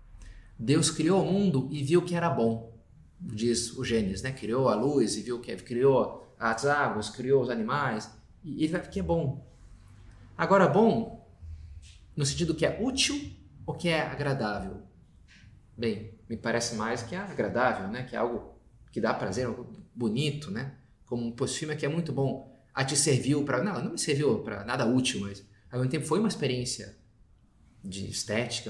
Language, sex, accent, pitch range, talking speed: Portuguese, male, Brazilian, 105-160 Hz, 180 wpm